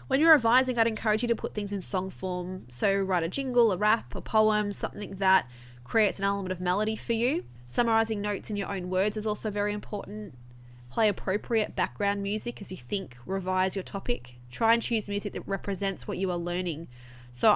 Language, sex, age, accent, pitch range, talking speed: English, female, 20-39, Australian, 180-215 Hz, 205 wpm